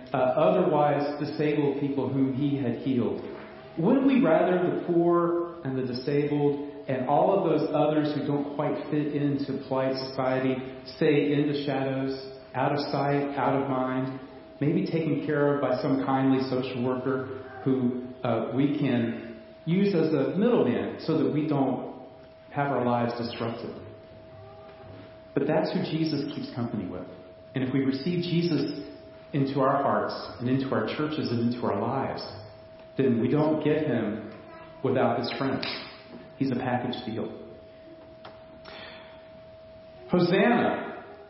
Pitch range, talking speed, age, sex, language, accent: 125-150 Hz, 145 wpm, 40-59, male, English, American